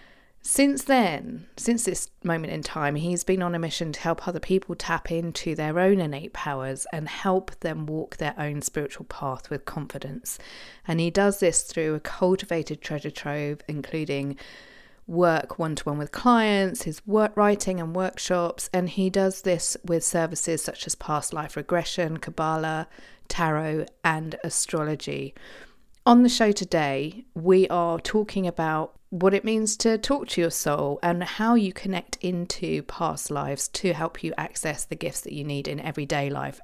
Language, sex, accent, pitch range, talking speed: English, female, British, 155-190 Hz, 165 wpm